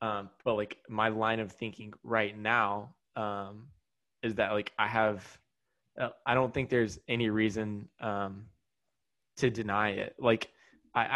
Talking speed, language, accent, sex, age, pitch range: 150 wpm, English, American, male, 10-29, 105-120 Hz